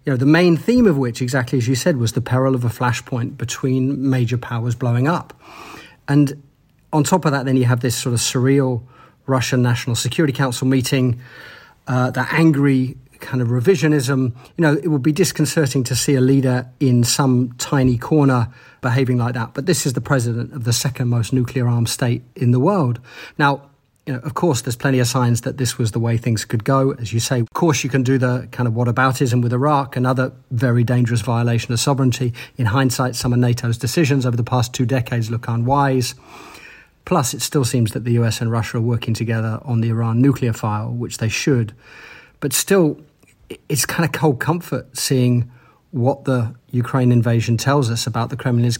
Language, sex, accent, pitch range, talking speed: English, male, British, 120-140 Hz, 200 wpm